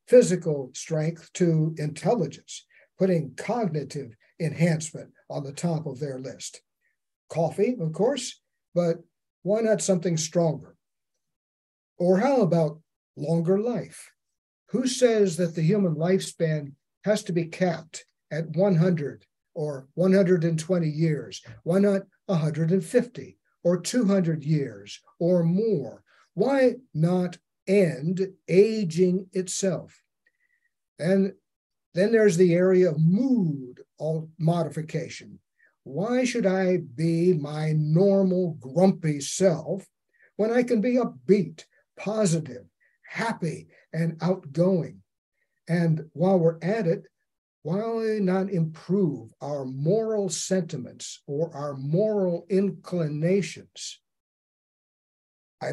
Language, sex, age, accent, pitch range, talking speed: English, male, 50-69, American, 155-195 Hz, 100 wpm